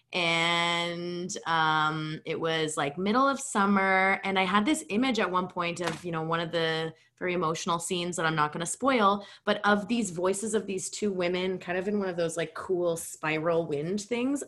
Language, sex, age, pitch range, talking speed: English, female, 20-39, 165-215 Hz, 205 wpm